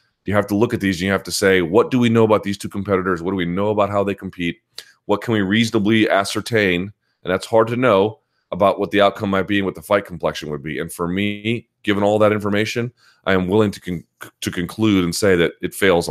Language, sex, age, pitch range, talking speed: English, male, 30-49, 90-110 Hz, 255 wpm